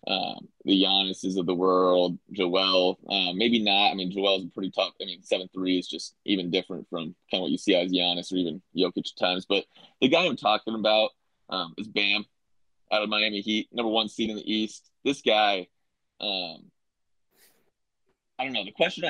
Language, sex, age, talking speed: English, male, 20-39, 190 wpm